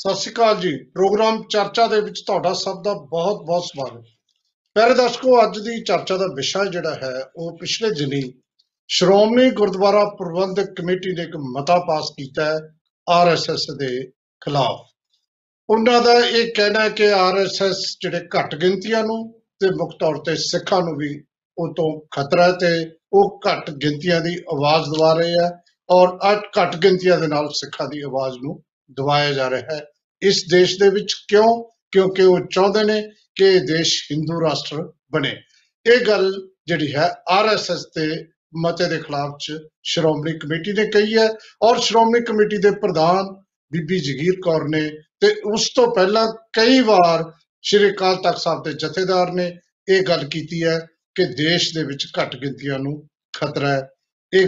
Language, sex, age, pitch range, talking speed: Punjabi, male, 50-69, 155-205 Hz, 145 wpm